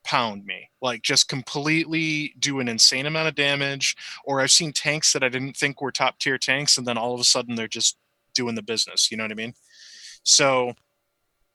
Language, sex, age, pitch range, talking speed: English, male, 20-39, 115-145 Hz, 210 wpm